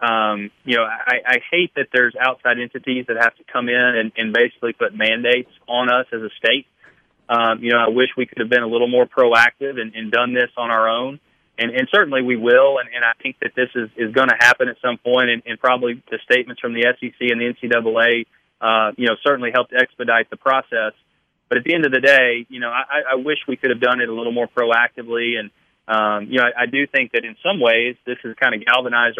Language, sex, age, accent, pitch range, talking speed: English, male, 30-49, American, 115-125 Hz, 245 wpm